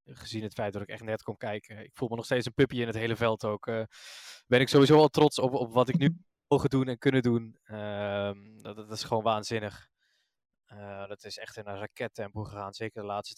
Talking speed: 245 wpm